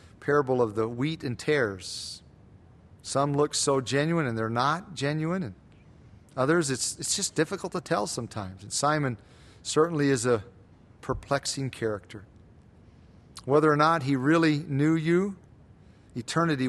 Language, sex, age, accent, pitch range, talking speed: English, male, 40-59, American, 110-145 Hz, 135 wpm